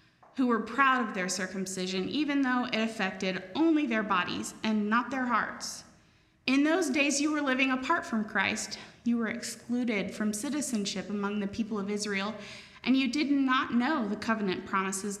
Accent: American